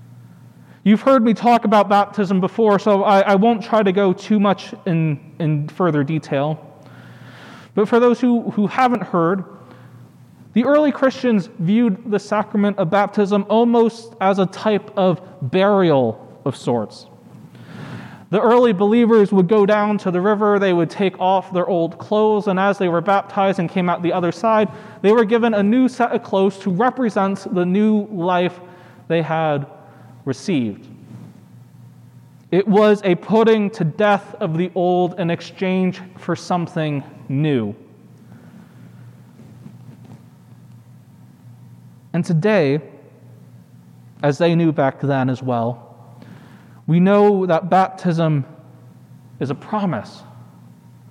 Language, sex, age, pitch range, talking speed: English, male, 30-49, 140-205 Hz, 135 wpm